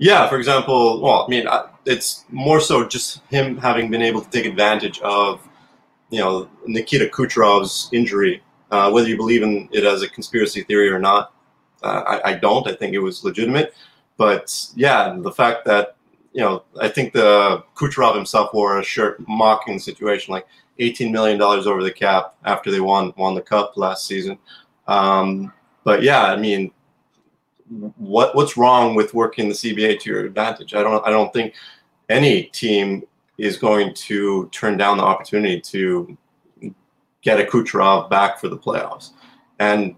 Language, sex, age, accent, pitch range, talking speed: English, male, 30-49, American, 100-115 Hz, 170 wpm